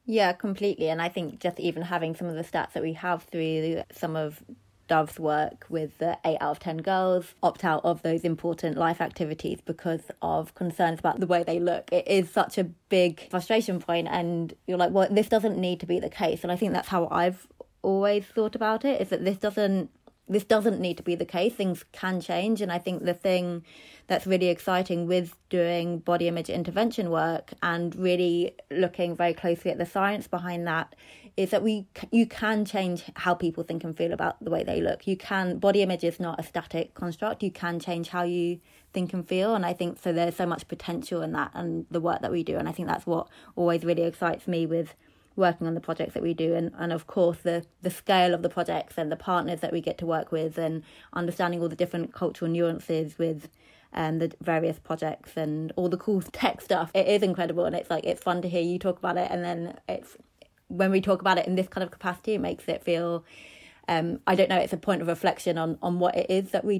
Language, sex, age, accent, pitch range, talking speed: English, female, 20-39, British, 165-185 Hz, 230 wpm